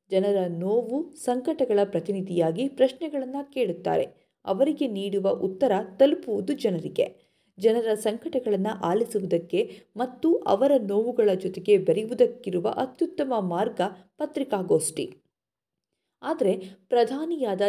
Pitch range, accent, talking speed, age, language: 190-255 Hz, native, 80 wpm, 50-69, Kannada